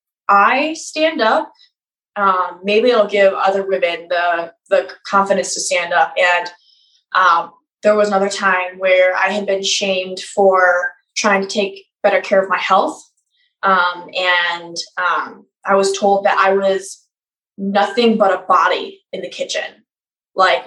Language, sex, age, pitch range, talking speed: English, female, 20-39, 185-230 Hz, 150 wpm